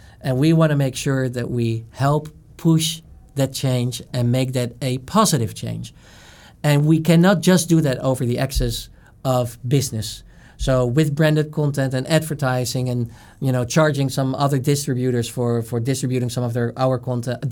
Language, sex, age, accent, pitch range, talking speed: English, male, 50-69, Dutch, 120-150 Hz, 170 wpm